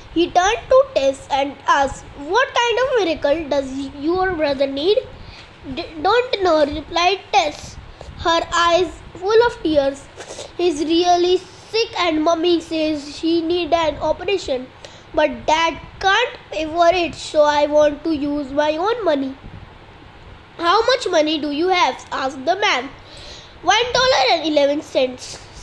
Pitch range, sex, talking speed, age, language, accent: 285-360 Hz, female, 135 wpm, 20-39, English, Indian